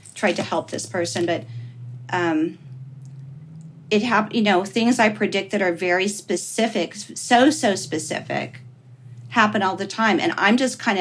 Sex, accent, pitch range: female, American, 160-210 Hz